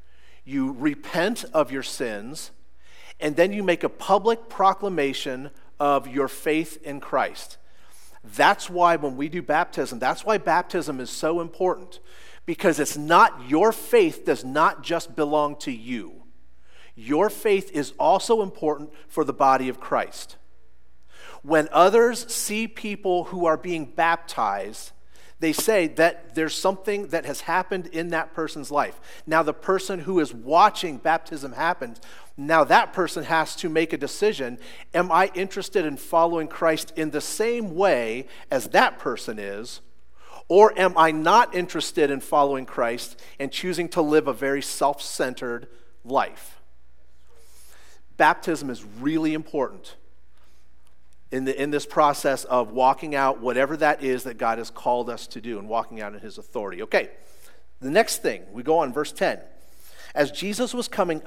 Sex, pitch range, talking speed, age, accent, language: male, 130-180 Hz, 155 wpm, 40-59, American, English